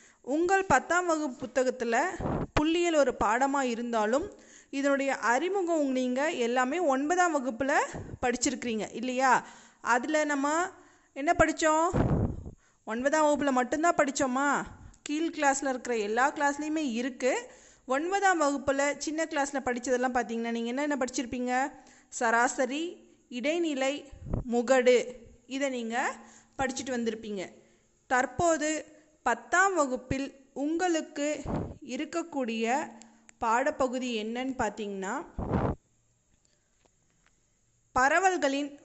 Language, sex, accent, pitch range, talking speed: Tamil, female, native, 245-305 Hz, 85 wpm